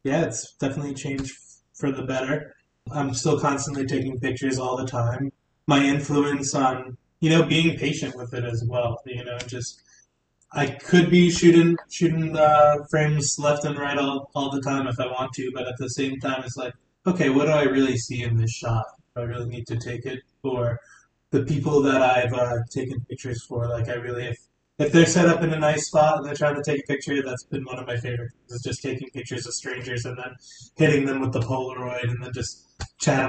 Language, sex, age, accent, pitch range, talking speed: English, male, 20-39, American, 125-145 Hz, 220 wpm